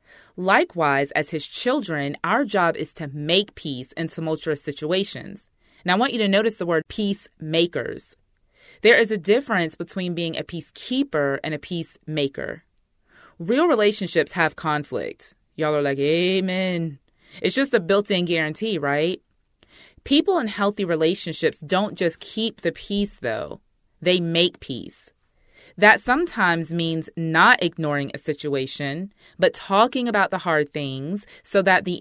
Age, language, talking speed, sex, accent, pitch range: 20-39, English, 140 wpm, female, American, 155-210 Hz